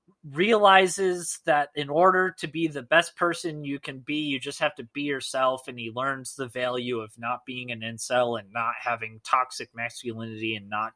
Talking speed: 190 wpm